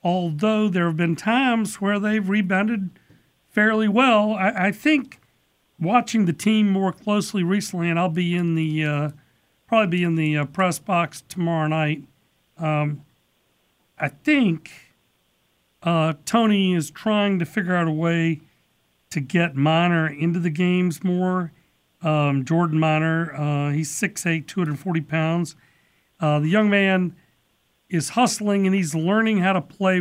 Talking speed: 145 wpm